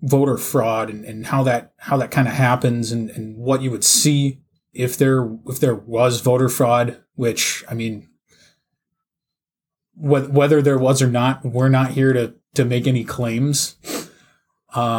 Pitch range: 120-150 Hz